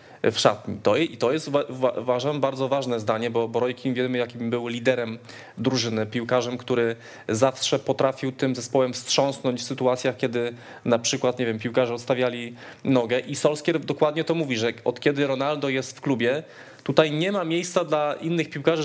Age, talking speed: 20-39, 170 wpm